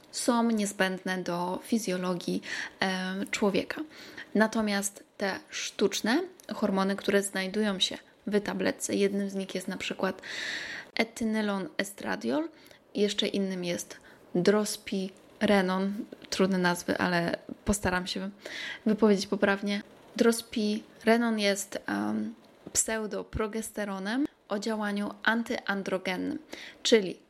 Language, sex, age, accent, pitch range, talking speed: Polish, female, 20-39, native, 190-225 Hz, 85 wpm